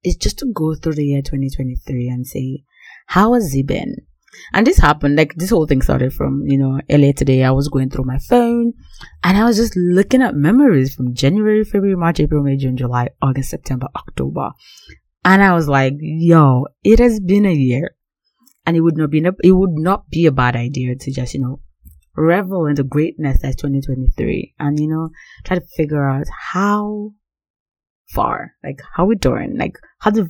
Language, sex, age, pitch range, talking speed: English, female, 30-49, 135-180 Hz, 200 wpm